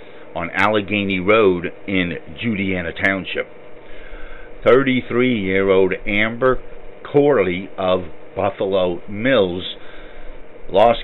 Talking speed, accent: 70 wpm, American